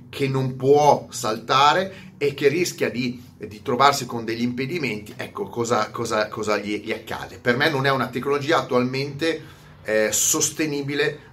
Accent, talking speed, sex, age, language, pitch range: native, 155 wpm, male, 30-49, Italian, 120-160 Hz